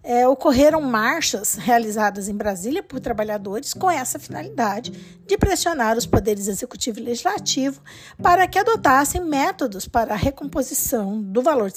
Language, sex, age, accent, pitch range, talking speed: Portuguese, female, 50-69, Brazilian, 220-330 Hz, 145 wpm